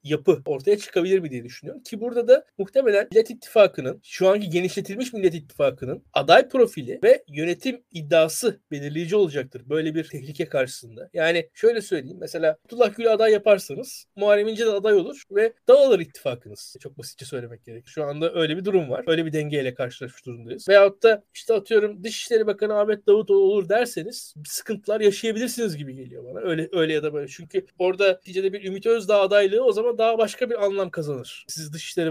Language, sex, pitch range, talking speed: Turkish, male, 165-235 Hz, 180 wpm